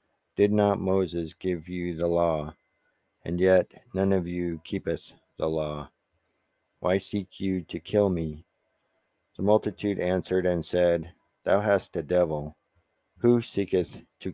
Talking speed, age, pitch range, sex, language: 140 wpm, 50-69, 85-95 Hz, male, English